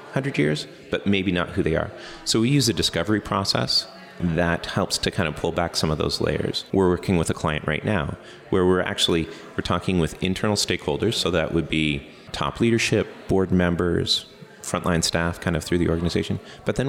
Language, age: English, 30-49